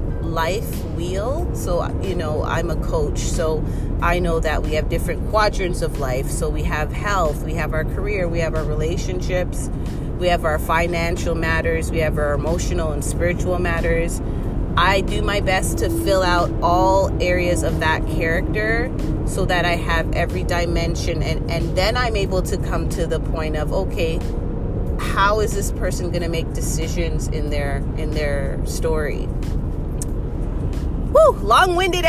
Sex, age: female, 30-49